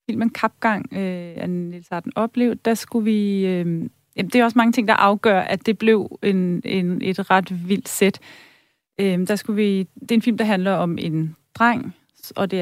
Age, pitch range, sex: 30-49, 180-210 Hz, female